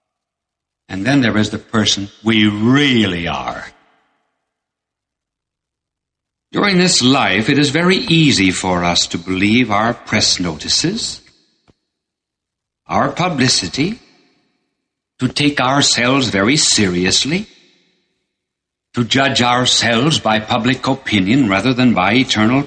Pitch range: 105-145 Hz